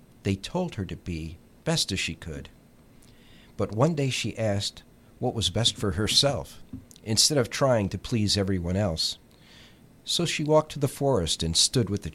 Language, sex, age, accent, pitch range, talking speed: English, male, 50-69, American, 85-120 Hz, 180 wpm